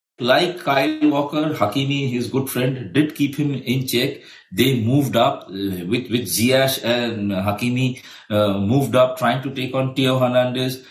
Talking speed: 160 wpm